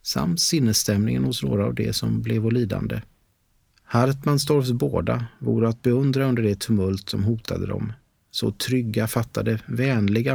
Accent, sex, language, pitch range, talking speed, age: native, male, Swedish, 100-125 Hz, 140 wpm, 30-49